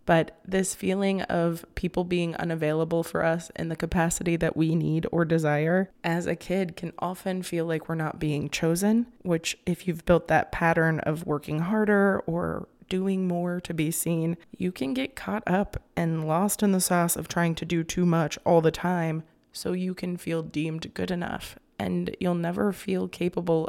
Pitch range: 165-180 Hz